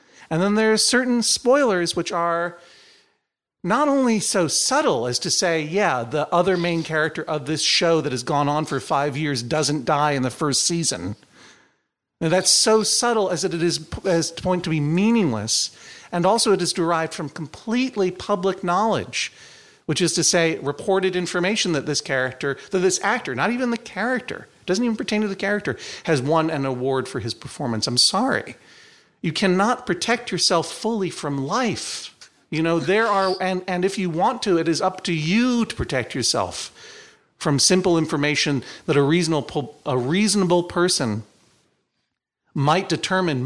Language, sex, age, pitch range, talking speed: English, male, 40-59, 145-190 Hz, 175 wpm